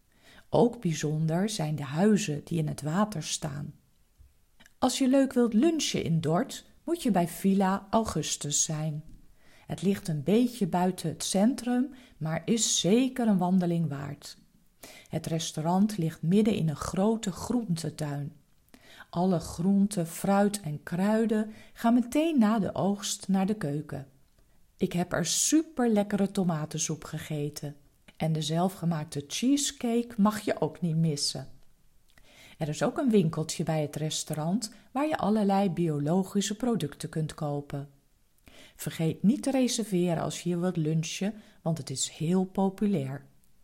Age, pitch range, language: 40-59, 155-210 Hz, Dutch